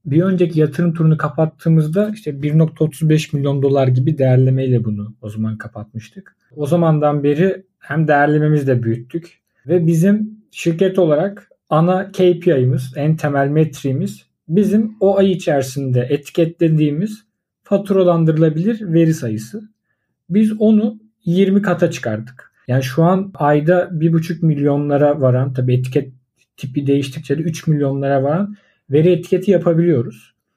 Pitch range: 140-190 Hz